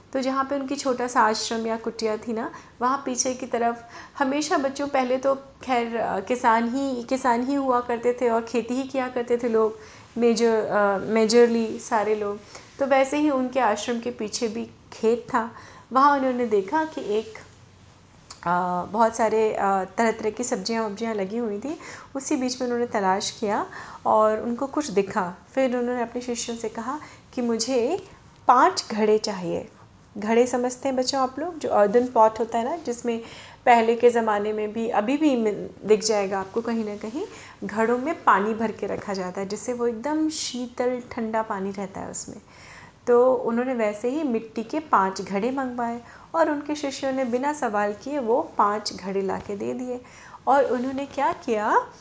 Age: 30-49